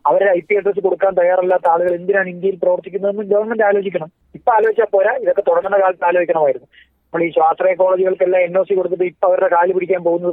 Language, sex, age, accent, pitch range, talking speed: Malayalam, male, 30-49, native, 160-215 Hz, 175 wpm